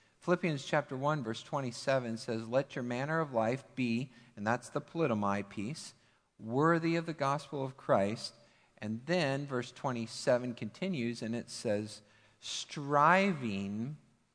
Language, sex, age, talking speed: English, male, 40-59, 135 wpm